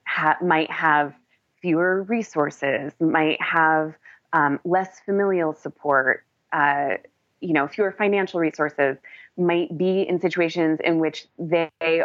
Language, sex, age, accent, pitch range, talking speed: English, female, 20-39, American, 150-180 Hz, 120 wpm